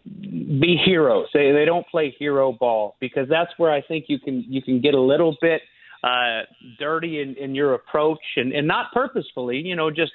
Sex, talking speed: male, 195 wpm